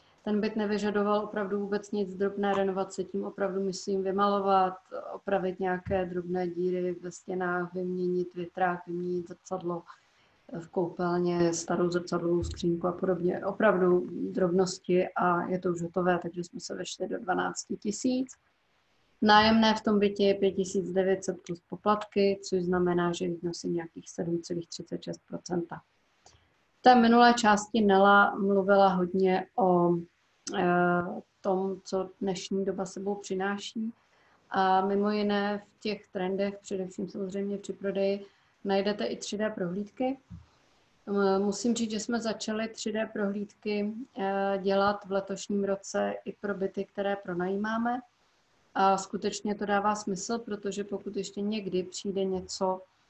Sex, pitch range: female, 185-205 Hz